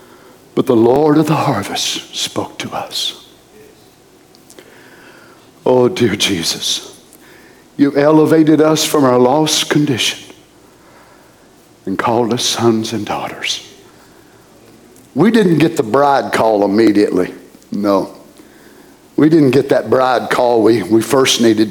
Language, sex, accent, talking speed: English, male, American, 120 wpm